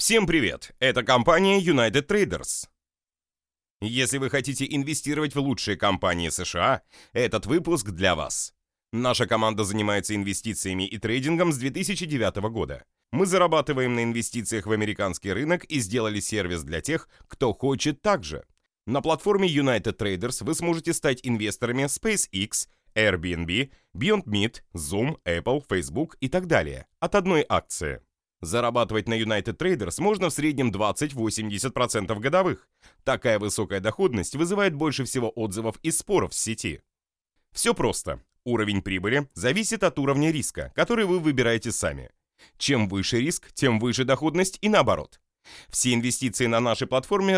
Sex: male